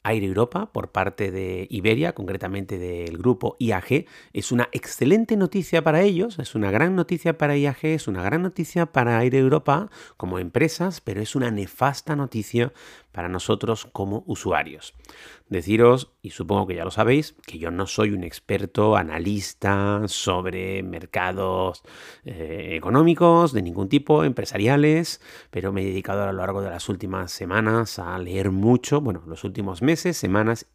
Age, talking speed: 30-49, 160 wpm